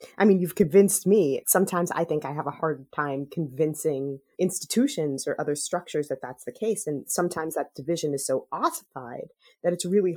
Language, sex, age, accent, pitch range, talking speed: English, female, 30-49, American, 150-200 Hz, 190 wpm